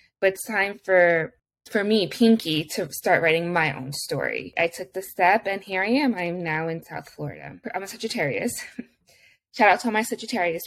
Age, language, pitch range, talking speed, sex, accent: 20-39, English, 170-220 Hz, 200 wpm, female, American